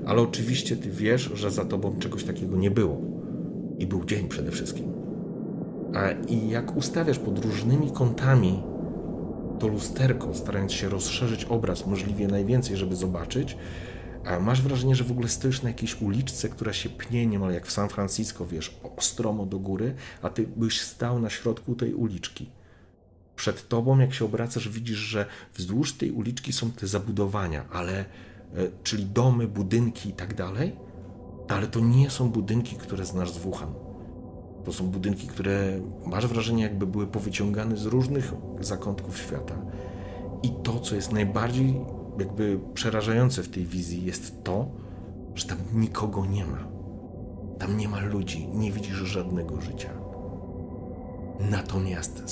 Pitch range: 95-115 Hz